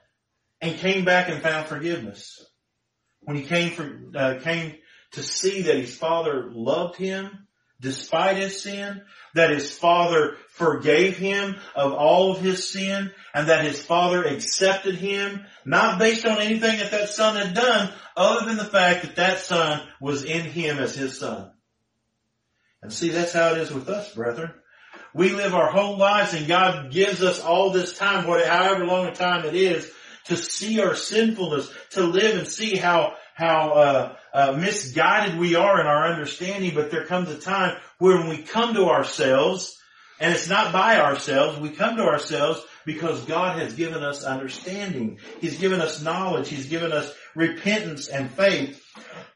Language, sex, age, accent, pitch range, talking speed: English, male, 40-59, American, 150-195 Hz, 170 wpm